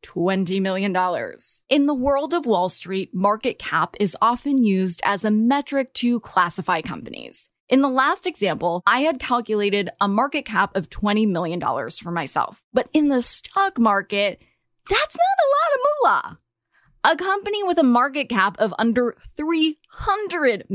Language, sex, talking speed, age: English, female, 155 wpm, 10-29